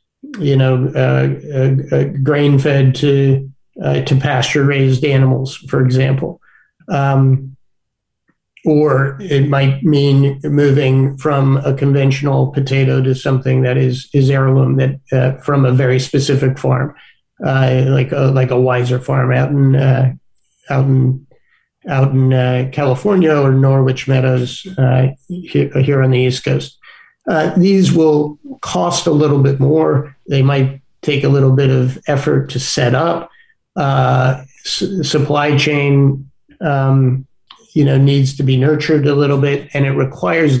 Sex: male